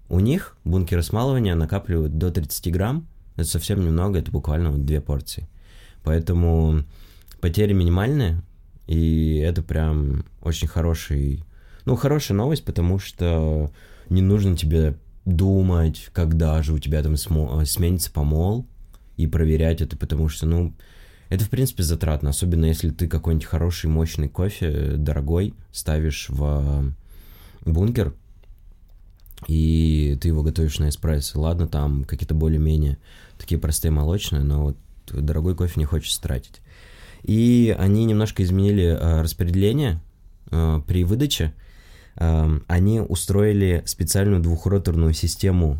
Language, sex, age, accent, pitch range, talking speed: Russian, male, 20-39, native, 80-95 Hz, 120 wpm